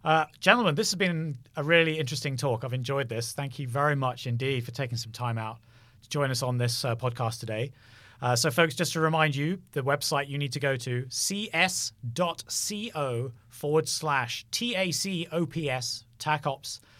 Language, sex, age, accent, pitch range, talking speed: English, male, 30-49, British, 120-155 Hz, 175 wpm